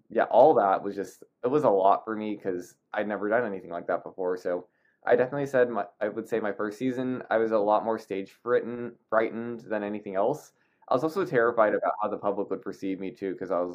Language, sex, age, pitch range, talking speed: English, male, 20-39, 95-120 Hz, 235 wpm